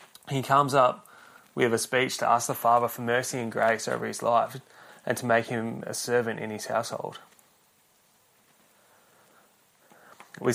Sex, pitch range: male, 110-125 Hz